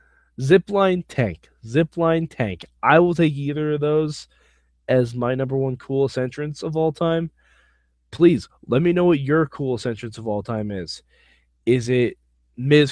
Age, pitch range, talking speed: 20-39, 105-150 Hz, 160 wpm